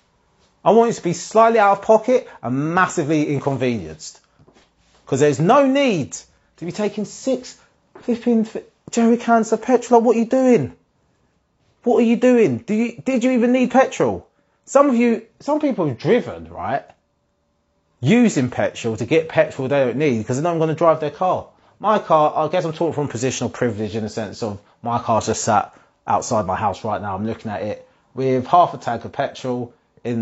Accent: British